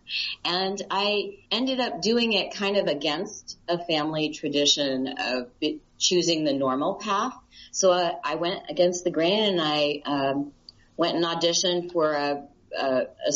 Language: English